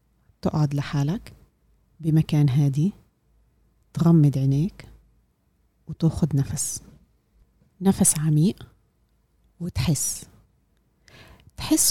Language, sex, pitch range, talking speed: Arabic, female, 140-175 Hz, 60 wpm